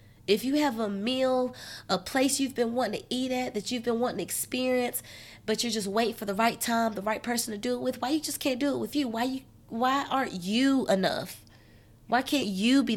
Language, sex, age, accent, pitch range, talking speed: English, female, 20-39, American, 195-260 Hz, 240 wpm